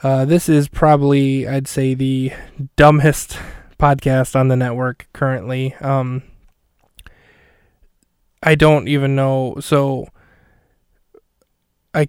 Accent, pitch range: American, 135-150 Hz